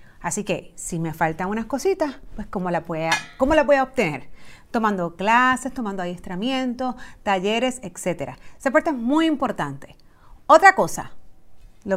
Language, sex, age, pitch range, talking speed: Spanish, female, 30-49, 200-270 Hz, 155 wpm